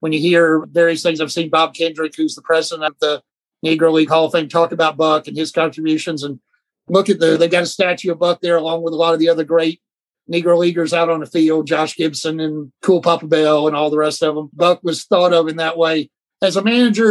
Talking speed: 255 wpm